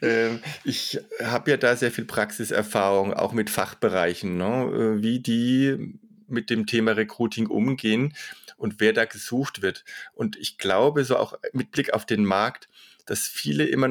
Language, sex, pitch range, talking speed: German, male, 110-130 Hz, 150 wpm